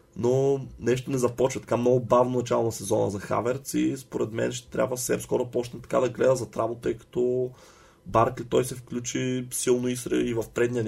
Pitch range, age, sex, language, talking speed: 115-130 Hz, 30-49, male, Bulgarian, 180 wpm